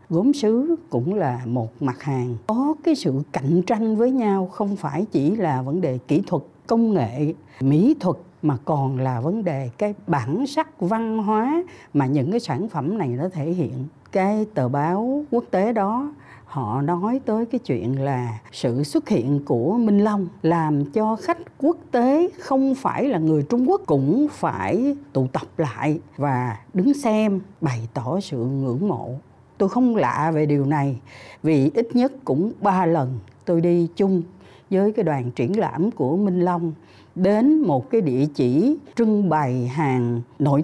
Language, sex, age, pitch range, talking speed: Vietnamese, female, 60-79, 135-220 Hz, 175 wpm